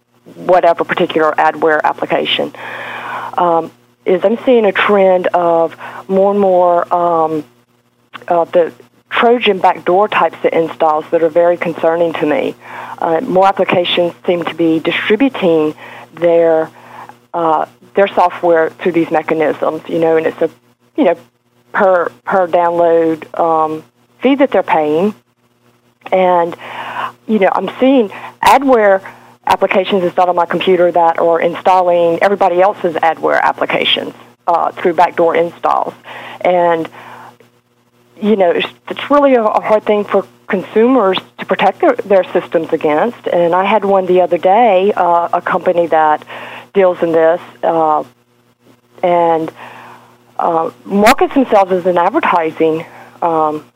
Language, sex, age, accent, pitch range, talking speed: English, female, 40-59, American, 160-190 Hz, 135 wpm